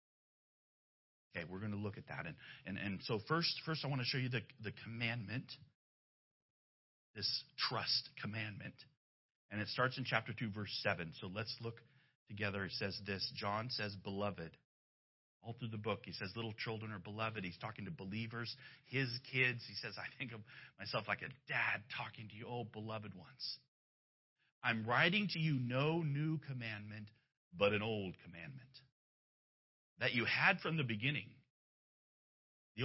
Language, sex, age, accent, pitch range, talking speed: English, male, 40-59, American, 105-140 Hz, 165 wpm